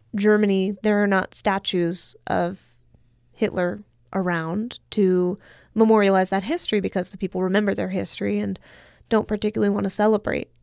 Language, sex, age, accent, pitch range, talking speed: English, female, 20-39, American, 185-215 Hz, 135 wpm